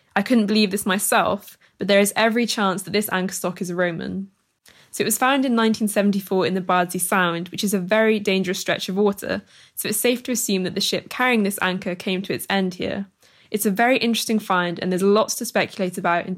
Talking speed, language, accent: 225 wpm, English, British